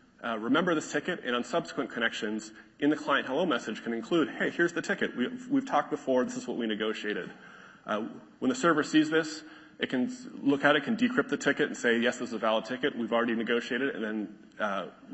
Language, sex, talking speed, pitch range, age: English, male, 225 wpm, 115-150 Hz, 30-49